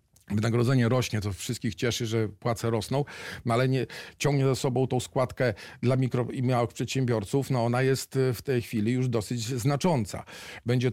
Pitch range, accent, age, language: 120-140 Hz, native, 40-59, Polish